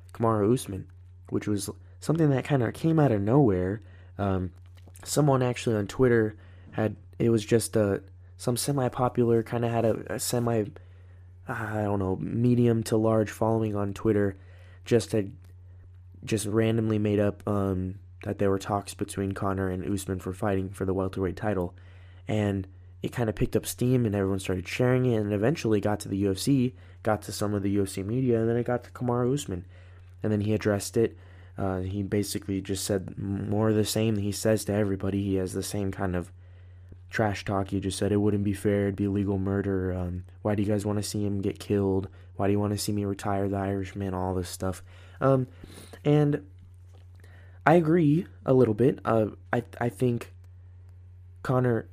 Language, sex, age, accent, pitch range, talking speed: English, male, 20-39, American, 90-115 Hz, 190 wpm